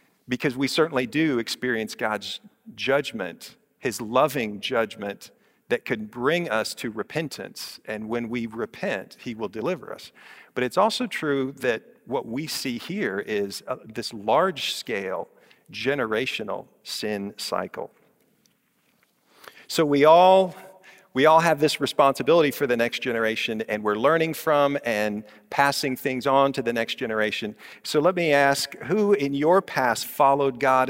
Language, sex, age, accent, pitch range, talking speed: English, male, 50-69, American, 115-160 Hz, 145 wpm